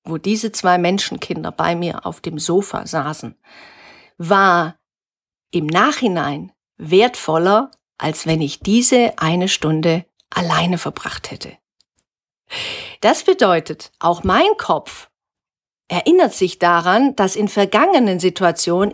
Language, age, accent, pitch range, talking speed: German, 50-69, German, 170-235 Hz, 110 wpm